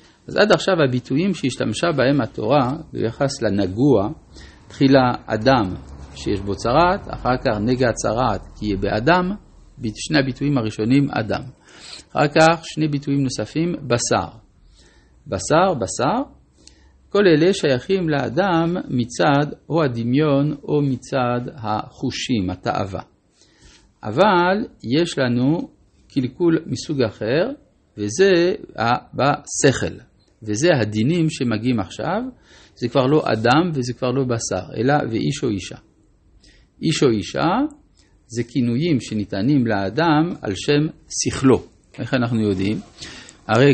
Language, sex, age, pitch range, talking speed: Hebrew, male, 50-69, 105-150 Hz, 115 wpm